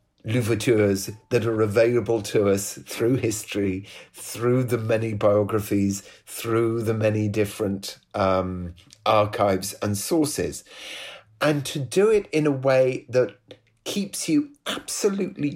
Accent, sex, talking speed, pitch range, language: British, male, 120 wpm, 110-150 Hz, English